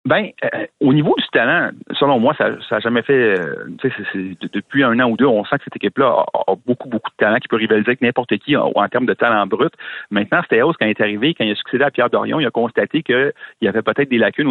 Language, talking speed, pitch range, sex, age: French, 280 wpm, 110-130 Hz, male, 40-59